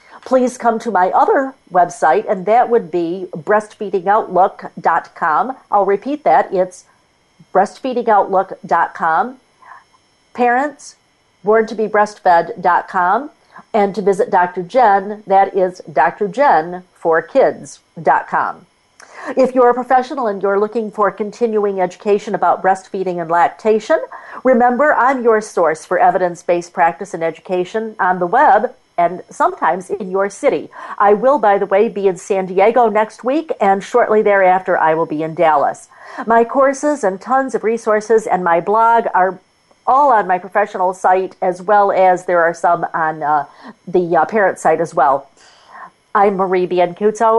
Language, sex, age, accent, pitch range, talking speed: English, female, 50-69, American, 180-225 Hz, 135 wpm